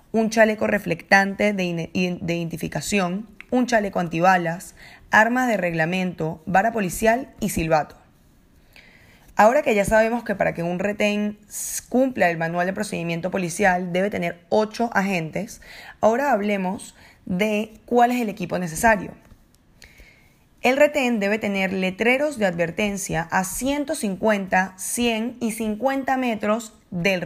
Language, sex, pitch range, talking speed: English, female, 185-240 Hz, 125 wpm